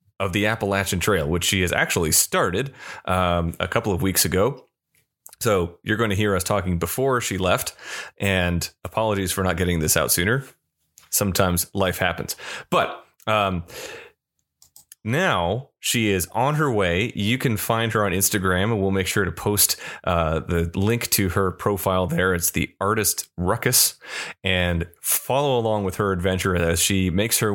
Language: English